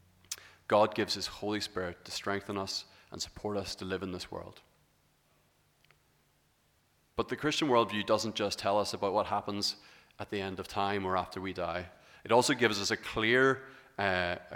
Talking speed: 175 wpm